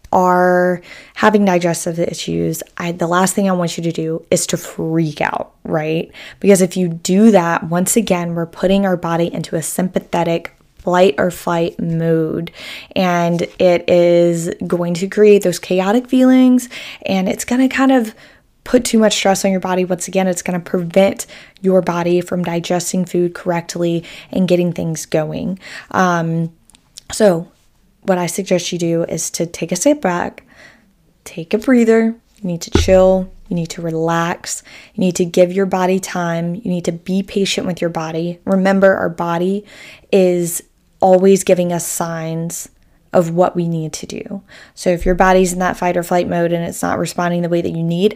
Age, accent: 20-39, American